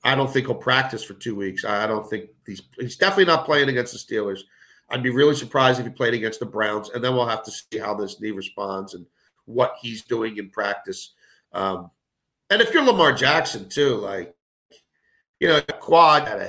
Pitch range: 115-145 Hz